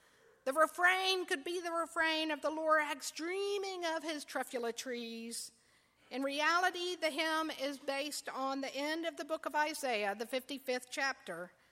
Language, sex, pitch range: English, female, 245-320 Hz